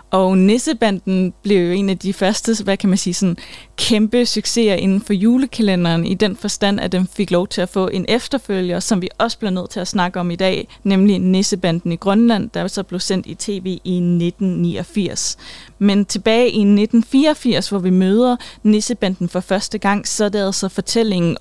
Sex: female